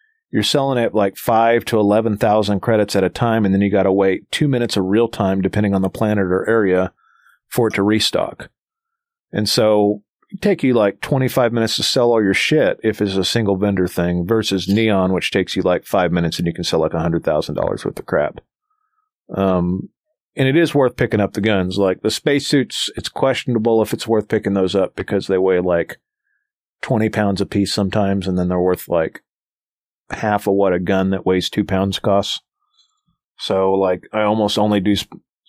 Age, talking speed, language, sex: 40-59, 200 wpm, English, male